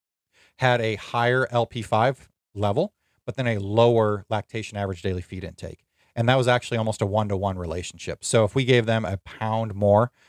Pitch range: 100-120 Hz